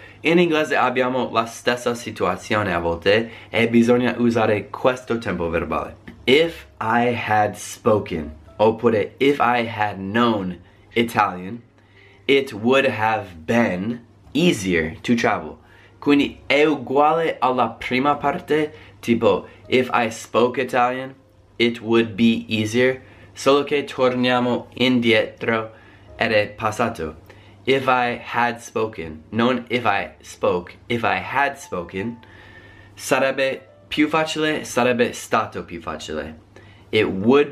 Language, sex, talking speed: Italian, male, 120 wpm